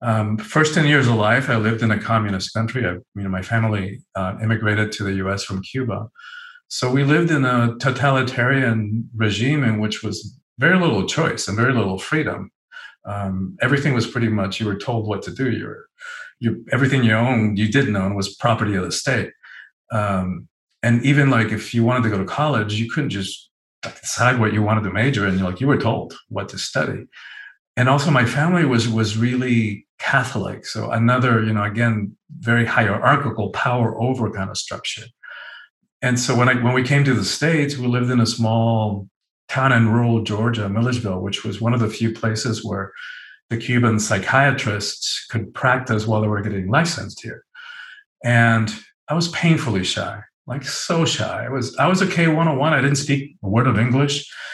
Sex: male